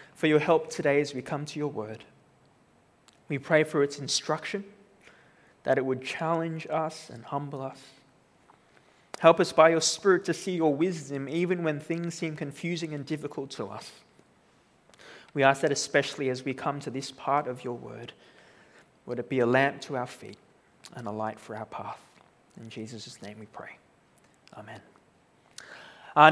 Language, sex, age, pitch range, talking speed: English, male, 20-39, 145-205 Hz, 170 wpm